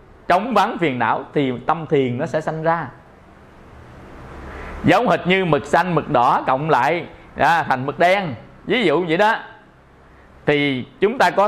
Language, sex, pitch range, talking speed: English, male, 120-170 Hz, 165 wpm